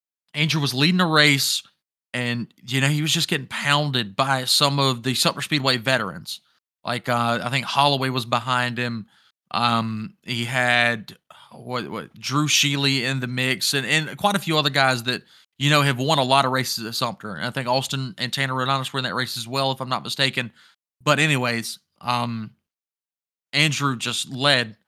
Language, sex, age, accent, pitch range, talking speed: English, male, 30-49, American, 120-140 Hz, 190 wpm